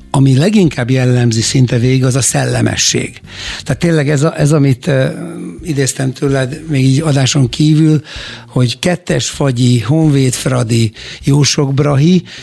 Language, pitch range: Hungarian, 130-150 Hz